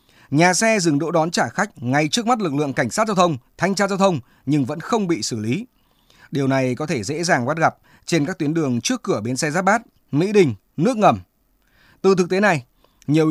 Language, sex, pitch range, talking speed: Vietnamese, male, 135-195 Hz, 240 wpm